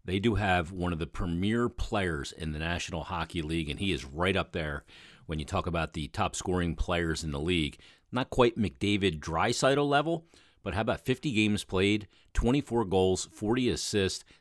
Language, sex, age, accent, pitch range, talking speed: English, male, 40-59, American, 85-110 Hz, 185 wpm